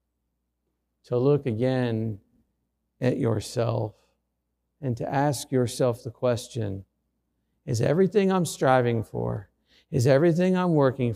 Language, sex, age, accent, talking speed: English, male, 50-69, American, 110 wpm